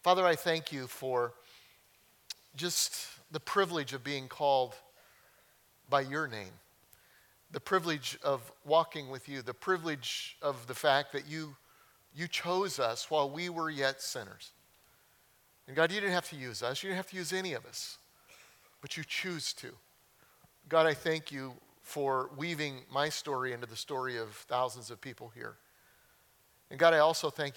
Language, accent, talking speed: English, American, 165 wpm